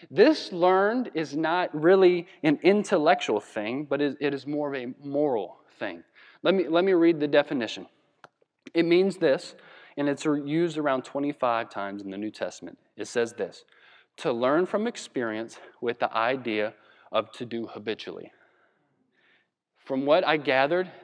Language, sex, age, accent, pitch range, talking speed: English, male, 30-49, American, 130-180 Hz, 150 wpm